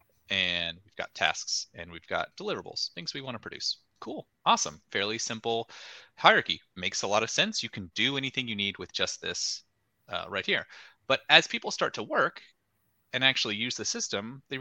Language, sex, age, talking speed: English, male, 30-49, 195 wpm